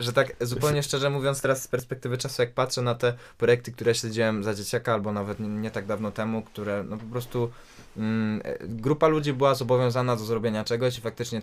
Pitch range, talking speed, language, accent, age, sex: 115-140 Hz, 210 wpm, Polish, native, 20-39, male